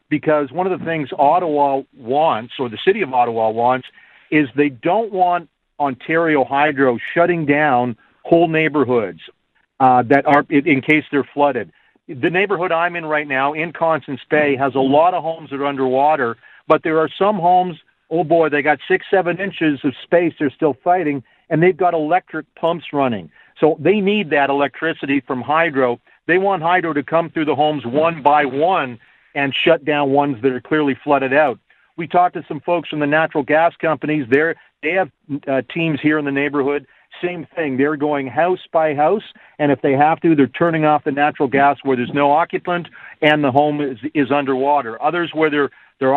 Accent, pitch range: American, 140-165 Hz